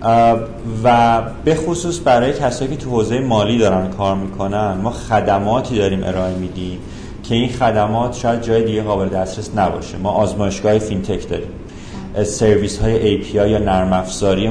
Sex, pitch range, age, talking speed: male, 95-120 Hz, 30-49, 145 wpm